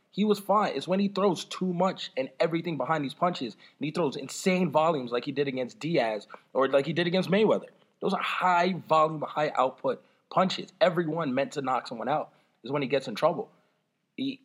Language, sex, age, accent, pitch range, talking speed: English, male, 20-39, American, 155-190 Hz, 210 wpm